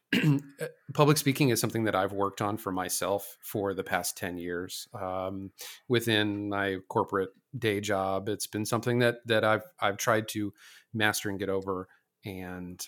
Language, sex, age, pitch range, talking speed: English, male, 40-59, 95-125 Hz, 165 wpm